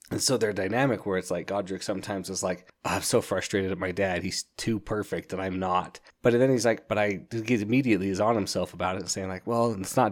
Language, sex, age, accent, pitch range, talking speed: English, male, 20-39, American, 95-115 Hz, 245 wpm